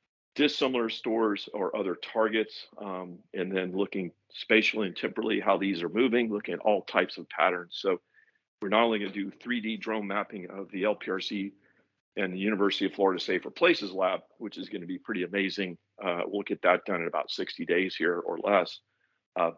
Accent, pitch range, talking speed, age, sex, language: American, 95-110 Hz, 185 wpm, 50-69, male, English